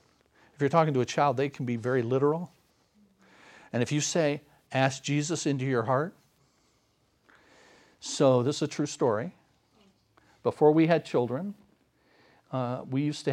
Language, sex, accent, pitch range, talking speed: English, male, American, 130-165 Hz, 155 wpm